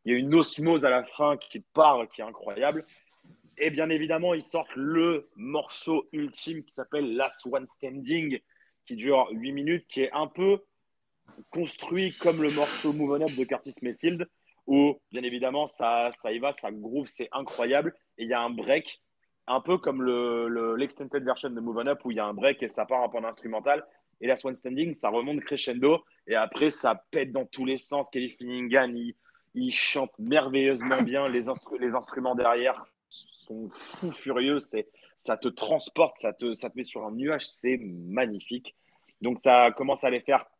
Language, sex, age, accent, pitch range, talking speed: French, male, 30-49, French, 120-150 Hz, 200 wpm